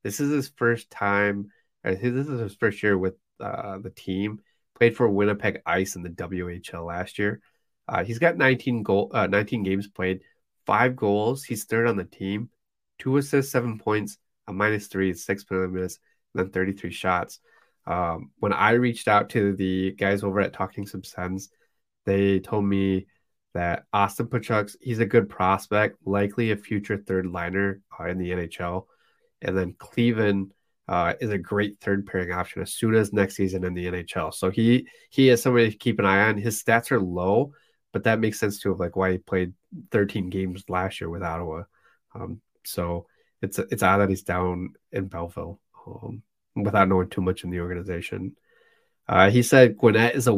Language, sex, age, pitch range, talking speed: English, male, 20-39, 95-110 Hz, 185 wpm